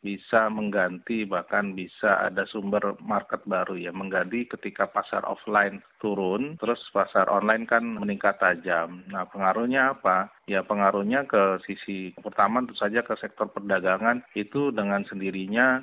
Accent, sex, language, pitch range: native, male, Indonesian, 95-110 Hz